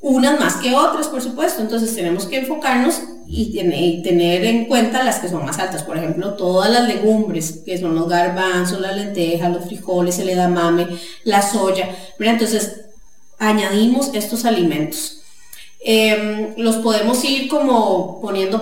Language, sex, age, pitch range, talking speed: English, female, 30-49, 180-245 Hz, 150 wpm